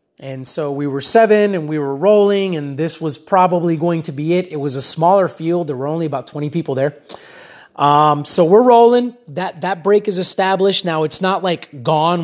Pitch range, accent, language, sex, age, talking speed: 150-190 Hz, American, English, male, 30-49, 210 wpm